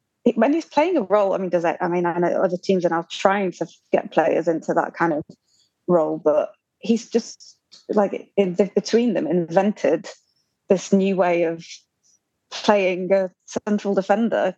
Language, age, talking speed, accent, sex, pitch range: English, 20-39, 175 wpm, British, female, 175-205 Hz